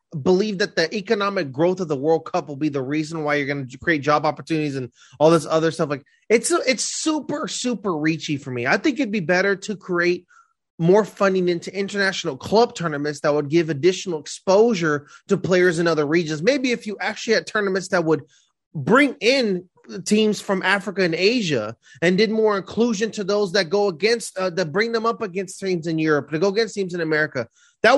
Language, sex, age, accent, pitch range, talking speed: English, male, 30-49, American, 175-235 Hz, 205 wpm